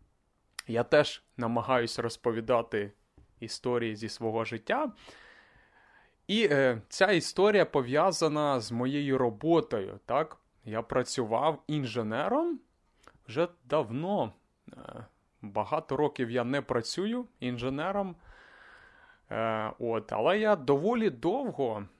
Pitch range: 115-160 Hz